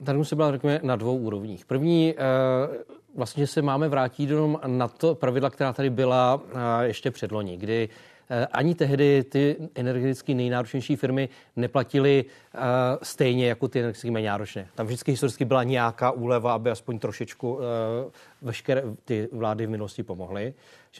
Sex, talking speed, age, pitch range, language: male, 145 wpm, 40-59, 125-155 Hz, Czech